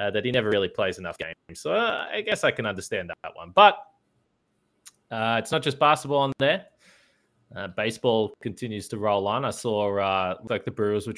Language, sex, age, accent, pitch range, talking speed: English, male, 20-39, Australian, 105-125 Hz, 210 wpm